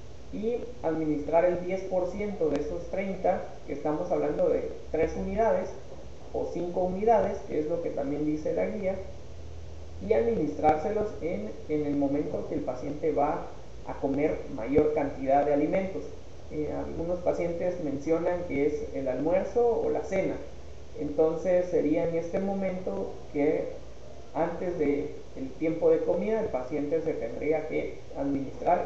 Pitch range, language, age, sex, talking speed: 145-195 Hz, Spanish, 30-49, male, 145 wpm